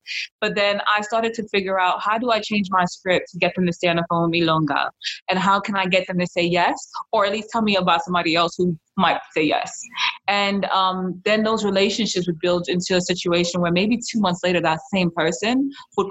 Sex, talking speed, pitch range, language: female, 240 wpm, 175-210 Hz, English